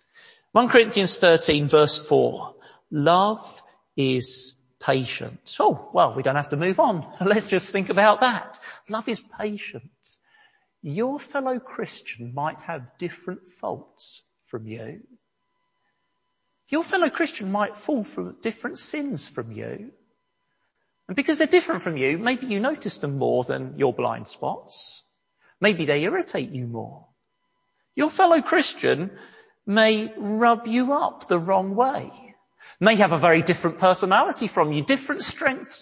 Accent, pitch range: British, 175-280 Hz